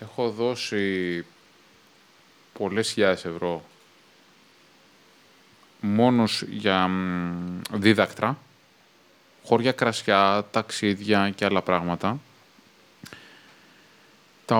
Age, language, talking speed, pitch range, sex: 20-39, Greek, 60 wpm, 95-125 Hz, male